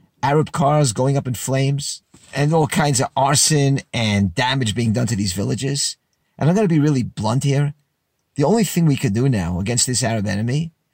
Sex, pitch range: male, 115-170 Hz